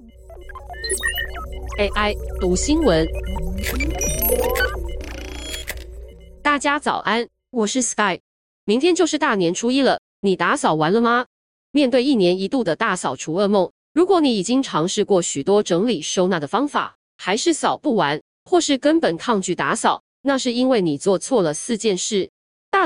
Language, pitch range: Chinese, 180-260 Hz